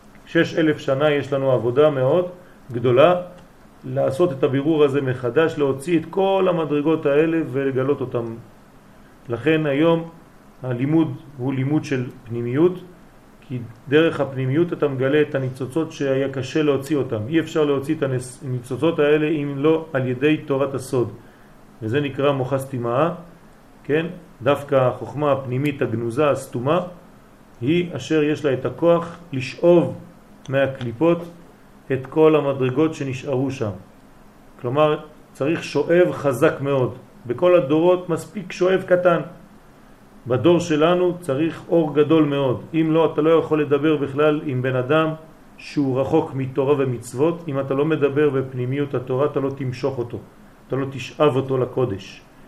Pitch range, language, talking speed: 130-160 Hz, French, 135 wpm